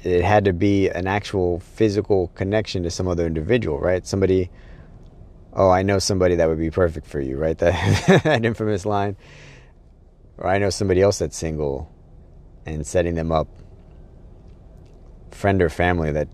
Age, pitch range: 30-49, 80-90 Hz